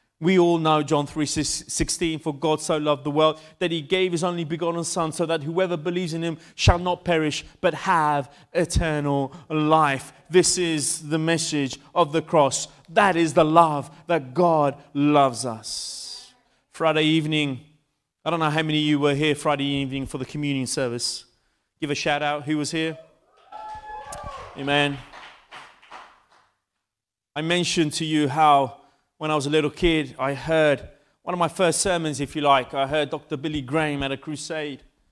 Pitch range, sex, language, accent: 140-165 Hz, male, Italian, British